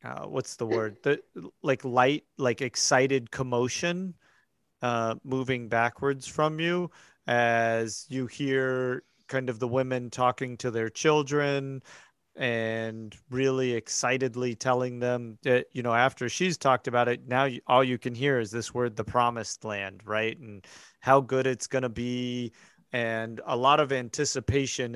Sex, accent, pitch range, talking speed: male, American, 120-155 Hz, 155 wpm